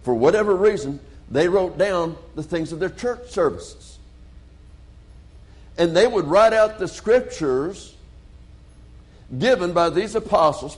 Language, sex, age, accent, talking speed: English, male, 60-79, American, 130 wpm